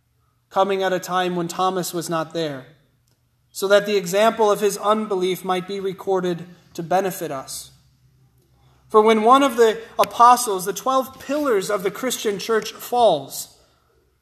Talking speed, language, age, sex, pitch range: 150 wpm, English, 20-39, male, 130-210 Hz